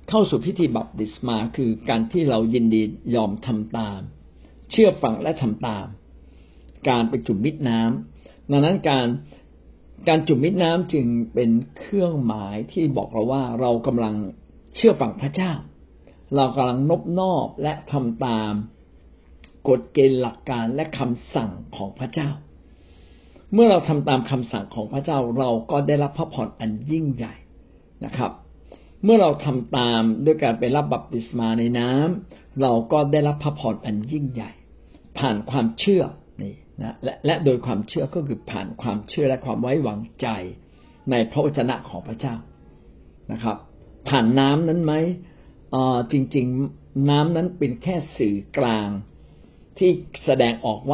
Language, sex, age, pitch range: Thai, male, 60-79, 105-145 Hz